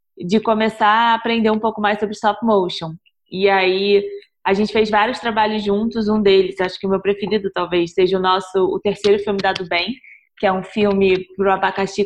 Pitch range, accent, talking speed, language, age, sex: 195-220 Hz, Brazilian, 200 wpm, Portuguese, 20-39, female